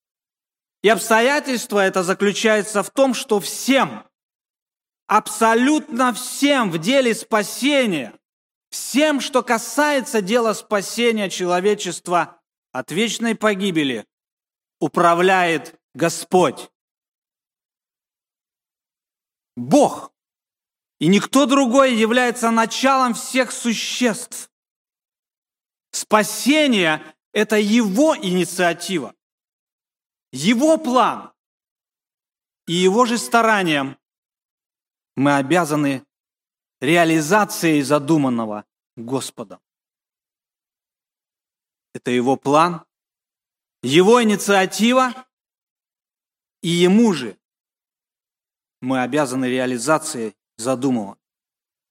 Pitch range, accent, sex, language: 160-245 Hz, native, male, Russian